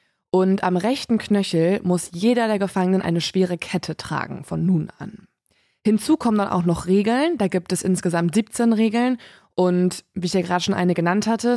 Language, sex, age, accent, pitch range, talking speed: German, female, 20-39, German, 170-205 Hz, 185 wpm